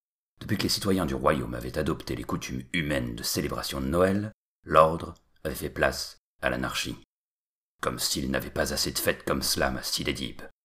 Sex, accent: male, French